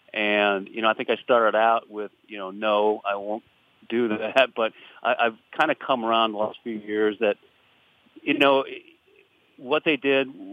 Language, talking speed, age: English, 190 wpm, 40-59